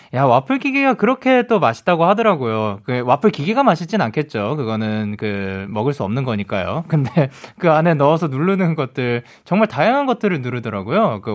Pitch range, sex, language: 120-195 Hz, male, Korean